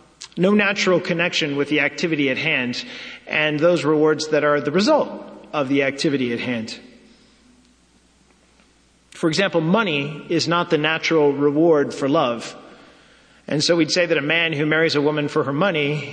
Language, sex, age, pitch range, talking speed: English, male, 40-59, 130-165 Hz, 165 wpm